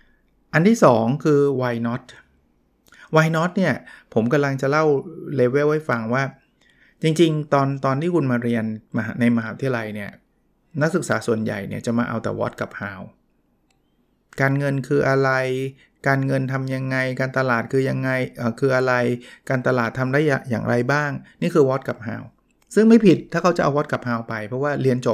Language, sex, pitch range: Thai, male, 120-145 Hz